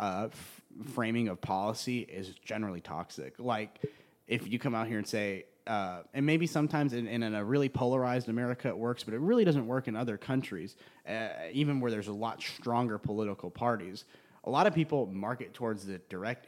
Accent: American